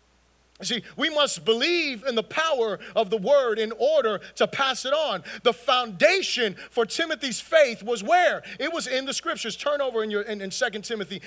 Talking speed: 185 wpm